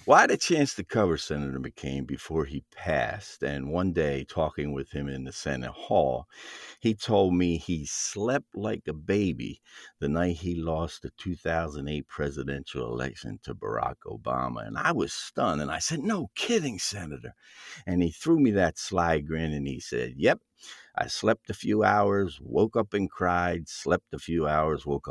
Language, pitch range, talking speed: English, 70-95 Hz, 180 wpm